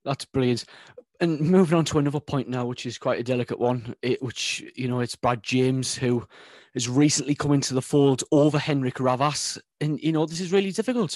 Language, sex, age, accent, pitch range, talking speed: English, male, 30-49, British, 145-185 Hz, 205 wpm